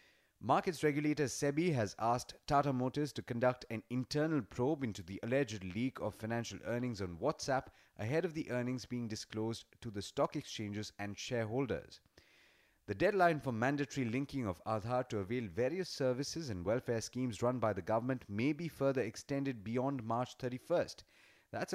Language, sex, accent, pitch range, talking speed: English, male, Indian, 105-140 Hz, 165 wpm